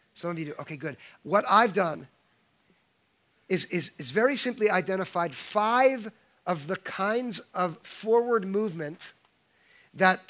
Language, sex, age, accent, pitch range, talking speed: English, male, 40-59, American, 180-230 Hz, 130 wpm